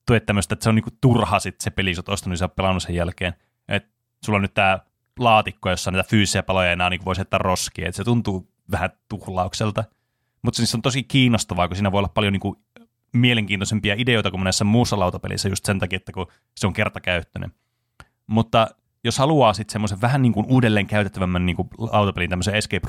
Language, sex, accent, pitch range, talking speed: Finnish, male, native, 95-120 Hz, 200 wpm